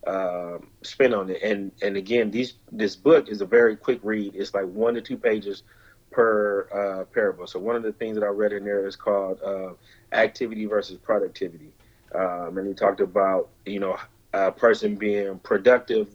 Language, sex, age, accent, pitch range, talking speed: English, male, 30-49, American, 100-115 Hz, 190 wpm